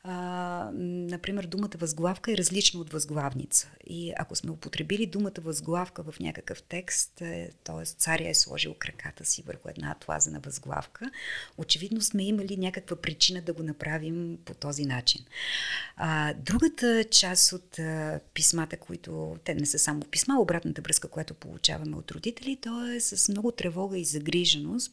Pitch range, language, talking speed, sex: 155-205 Hz, Bulgarian, 155 wpm, female